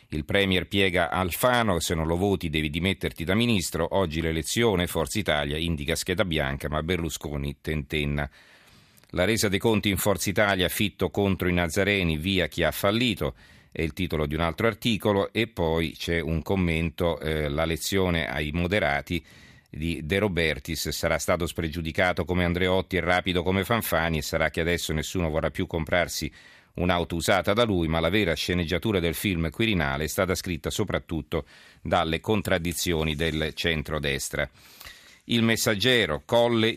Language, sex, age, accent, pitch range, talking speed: Italian, male, 40-59, native, 80-100 Hz, 155 wpm